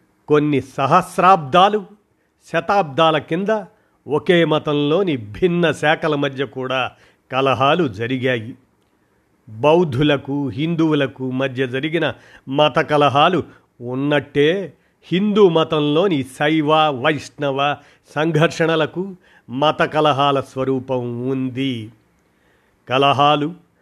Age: 50-69